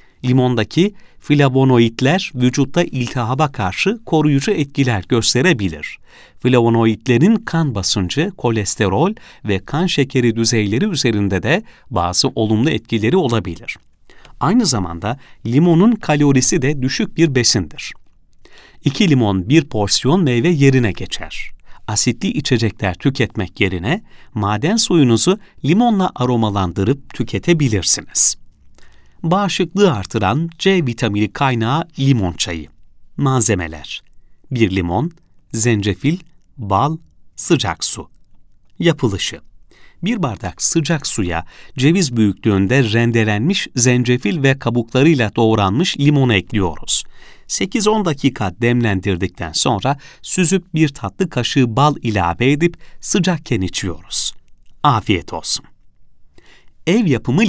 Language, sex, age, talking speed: Turkish, male, 40-59, 95 wpm